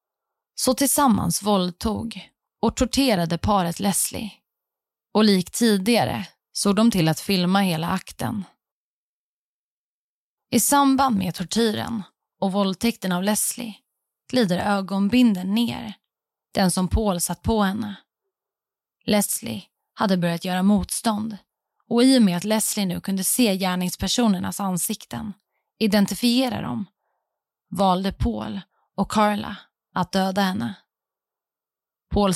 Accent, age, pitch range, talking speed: native, 20-39, 185-225 Hz, 110 wpm